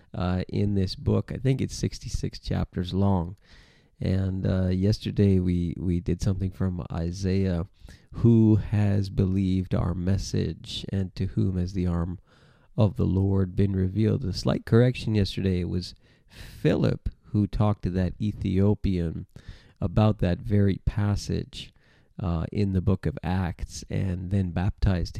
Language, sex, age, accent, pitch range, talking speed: English, male, 40-59, American, 95-110 Hz, 145 wpm